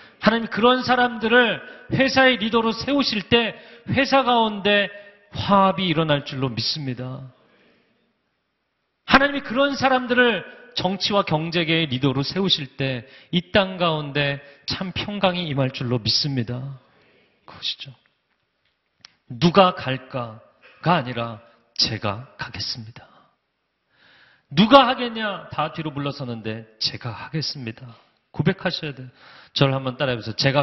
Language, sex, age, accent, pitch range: Korean, male, 40-59, native, 125-205 Hz